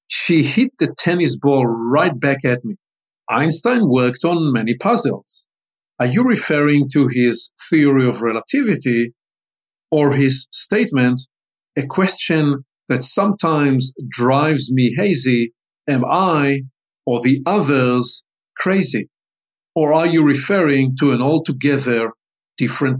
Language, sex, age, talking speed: English, male, 50-69, 120 wpm